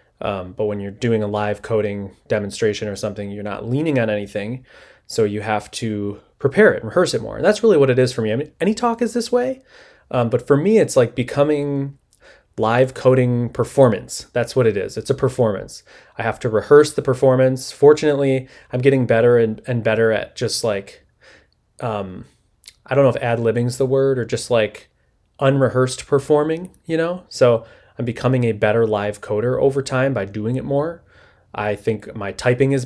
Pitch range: 105-140 Hz